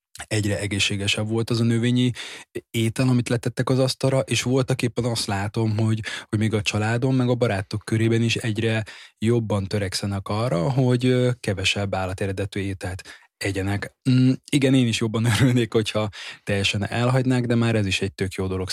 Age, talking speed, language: 20-39, 165 wpm, Hungarian